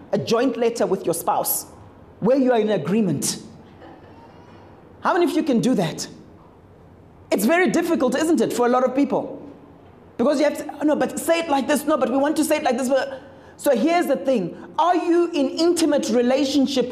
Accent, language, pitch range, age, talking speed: South African, English, 235-290 Hz, 30-49, 200 wpm